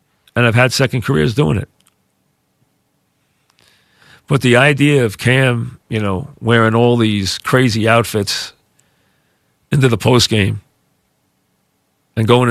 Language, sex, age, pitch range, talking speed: English, male, 40-59, 105-125 Hz, 120 wpm